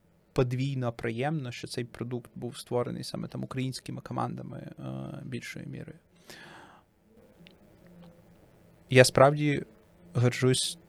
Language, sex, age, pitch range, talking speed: Ukrainian, male, 20-39, 115-130 Hz, 90 wpm